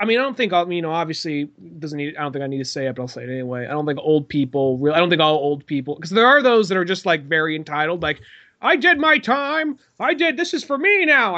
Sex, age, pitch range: male, 30-49, 140-175 Hz